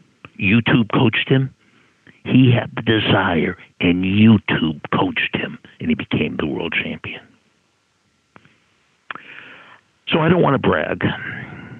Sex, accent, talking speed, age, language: male, American, 115 wpm, 60-79, English